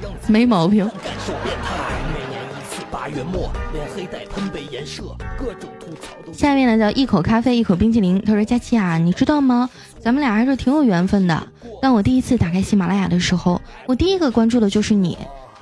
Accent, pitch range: native, 195-255 Hz